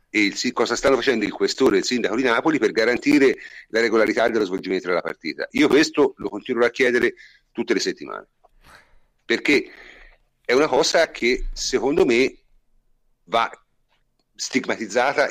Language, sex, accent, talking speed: Italian, male, native, 150 wpm